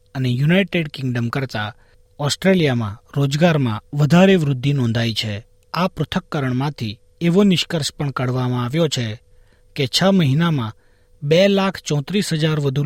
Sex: male